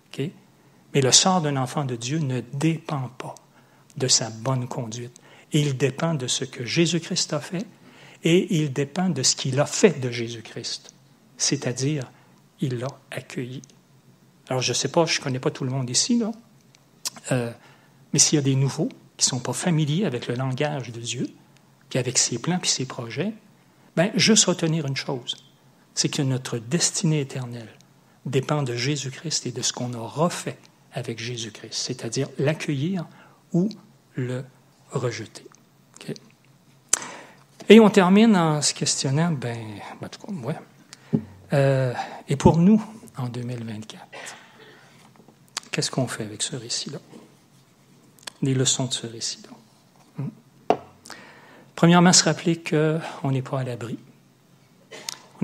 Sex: male